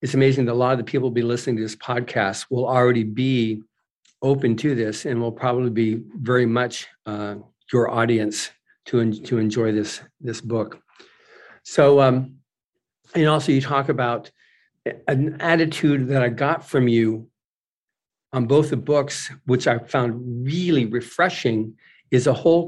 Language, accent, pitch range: English, American, 120-135 Hz